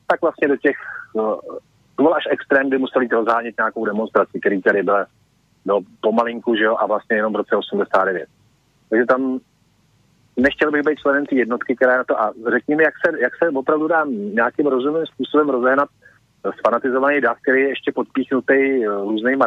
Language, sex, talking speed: Slovak, male, 170 wpm